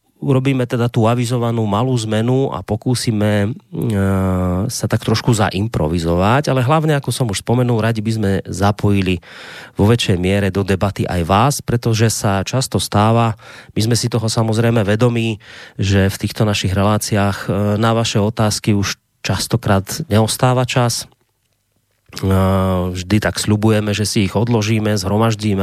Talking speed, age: 140 wpm, 30-49